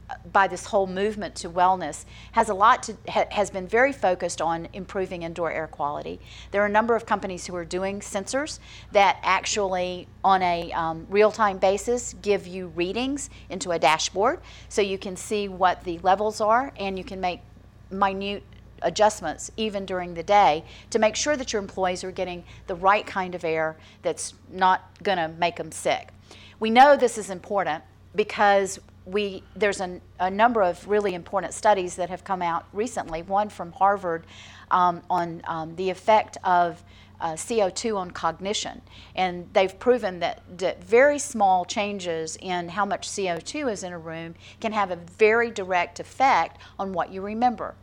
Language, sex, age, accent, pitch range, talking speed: English, female, 40-59, American, 175-210 Hz, 175 wpm